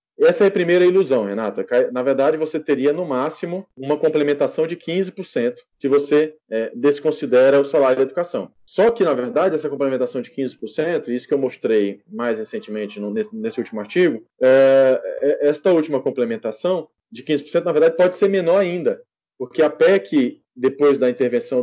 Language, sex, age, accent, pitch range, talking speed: Portuguese, male, 20-39, Brazilian, 135-200 Hz, 170 wpm